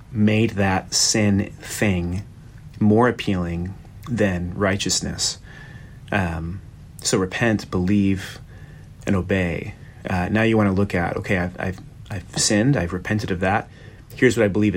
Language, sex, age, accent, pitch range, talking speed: English, male, 30-49, American, 95-115 Hz, 135 wpm